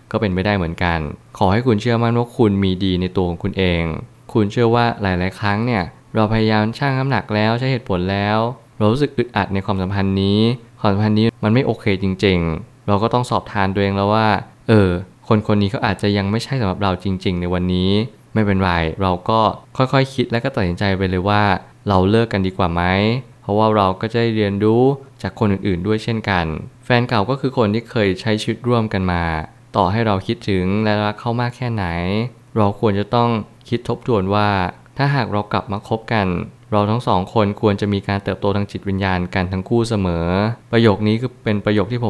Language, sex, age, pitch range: Thai, male, 20-39, 100-115 Hz